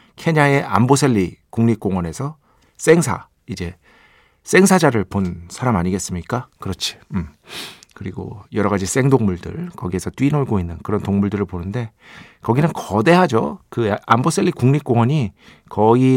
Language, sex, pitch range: Korean, male, 100-150 Hz